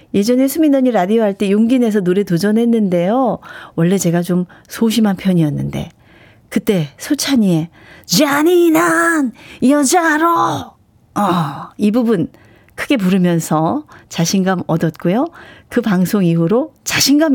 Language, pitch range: Korean, 170-245 Hz